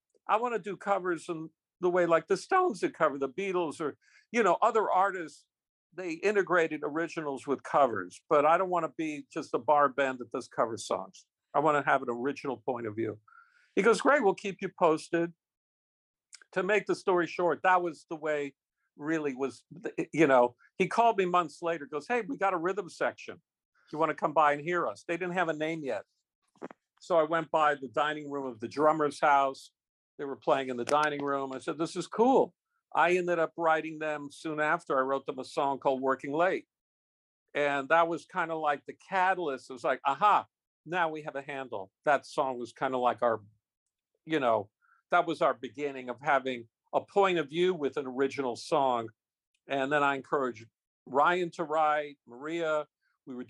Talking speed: 205 wpm